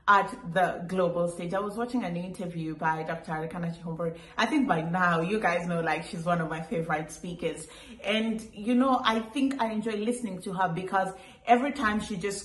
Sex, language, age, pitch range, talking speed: female, English, 30-49, 175-230 Hz, 195 wpm